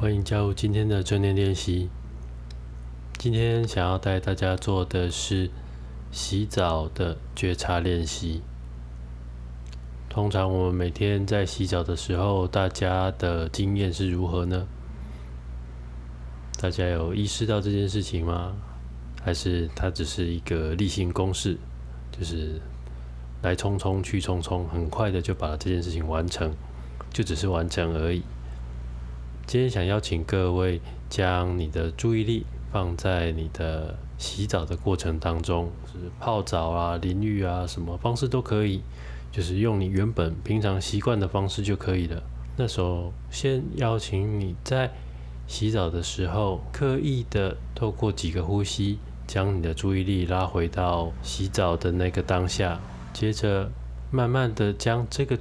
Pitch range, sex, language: 80-100 Hz, male, Chinese